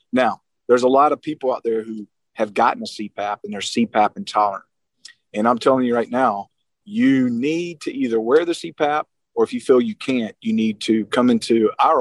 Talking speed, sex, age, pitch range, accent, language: 210 wpm, male, 40-59, 110-130 Hz, American, English